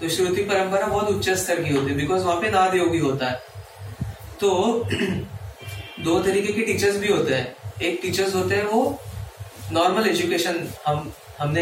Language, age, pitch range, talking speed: Hindi, 30-49, 125-180 Hz, 165 wpm